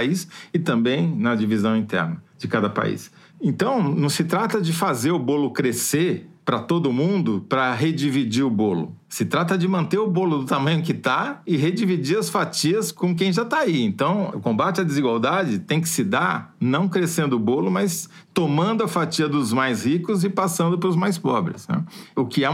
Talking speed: 195 wpm